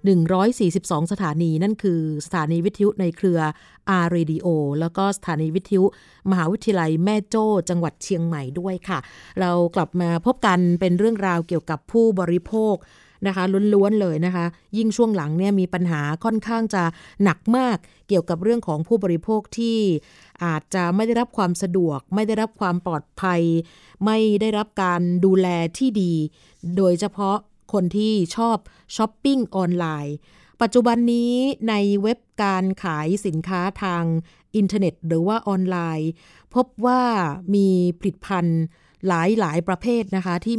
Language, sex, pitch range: Thai, female, 170-210 Hz